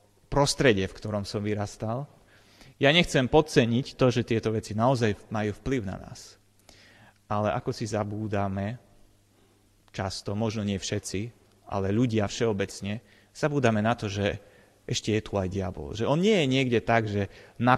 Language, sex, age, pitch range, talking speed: Slovak, male, 30-49, 100-120 Hz, 150 wpm